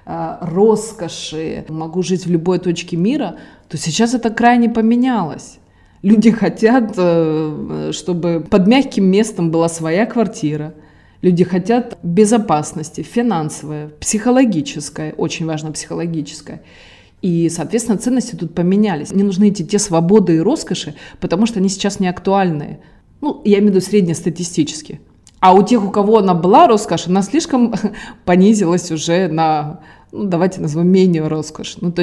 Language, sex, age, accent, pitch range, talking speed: Russian, female, 20-39, native, 165-210 Hz, 135 wpm